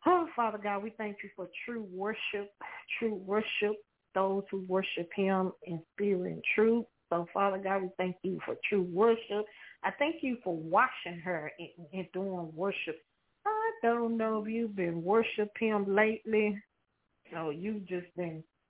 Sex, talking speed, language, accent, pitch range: female, 165 wpm, English, American, 175-205 Hz